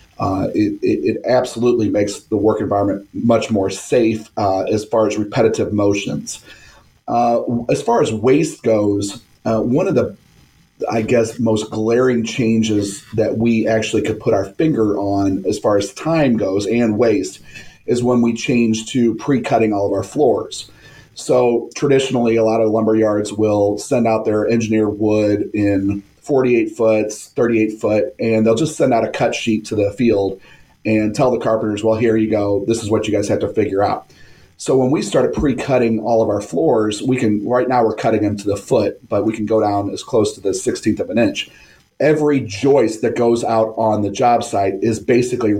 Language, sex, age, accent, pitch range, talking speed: English, male, 30-49, American, 105-120 Hz, 190 wpm